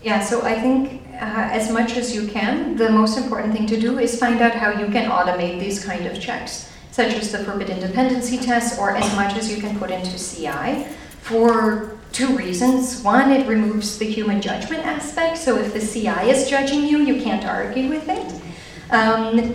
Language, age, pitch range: Bulgarian, 40-59, 200-240 Hz